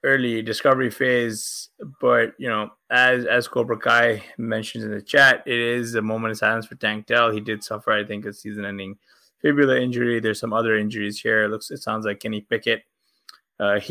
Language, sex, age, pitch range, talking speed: English, male, 20-39, 105-125 Hz, 200 wpm